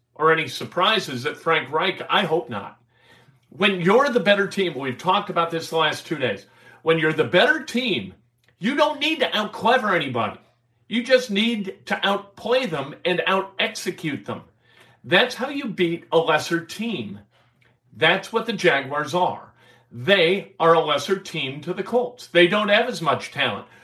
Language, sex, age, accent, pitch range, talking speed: English, male, 50-69, American, 165-225 Hz, 170 wpm